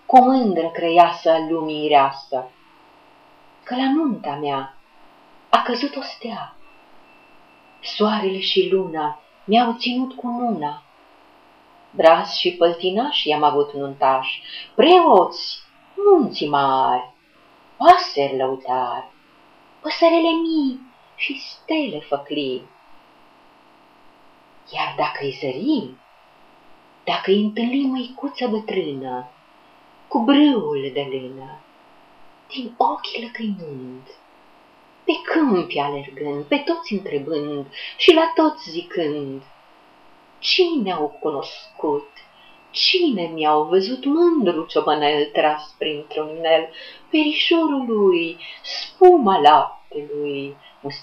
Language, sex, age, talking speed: Romanian, female, 40-59, 90 wpm